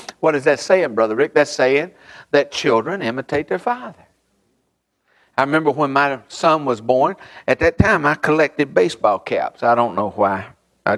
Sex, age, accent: male, 60-79, American